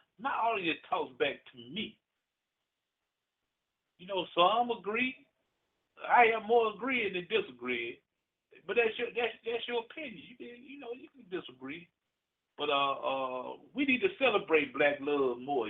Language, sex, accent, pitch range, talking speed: English, male, American, 145-240 Hz, 165 wpm